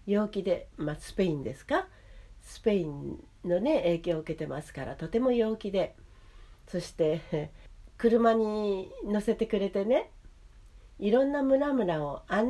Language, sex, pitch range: Japanese, female, 155-235 Hz